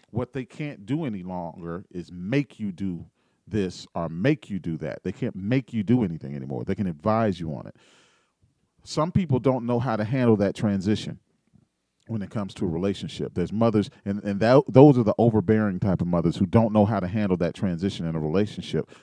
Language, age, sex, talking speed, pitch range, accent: English, 40-59, male, 210 wpm, 95-125 Hz, American